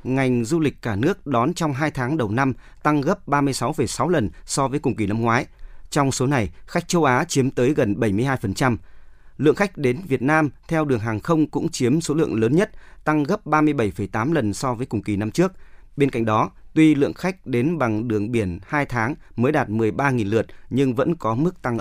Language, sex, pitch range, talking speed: Vietnamese, male, 120-155 Hz, 210 wpm